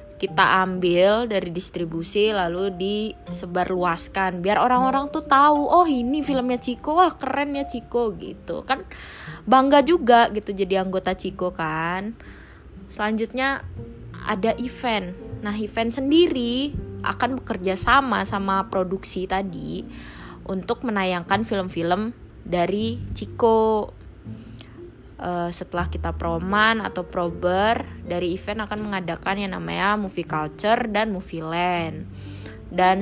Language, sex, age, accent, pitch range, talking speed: Indonesian, female, 20-39, native, 175-220 Hz, 115 wpm